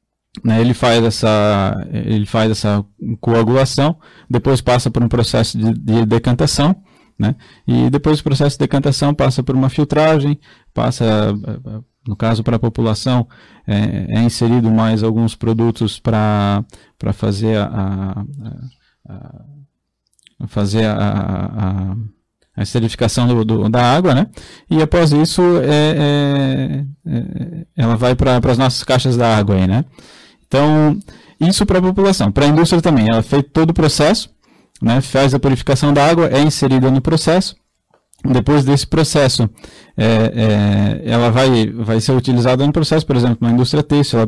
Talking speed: 145 wpm